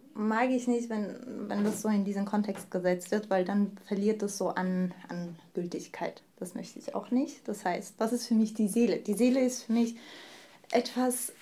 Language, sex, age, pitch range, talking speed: German, female, 20-39, 195-235 Hz, 205 wpm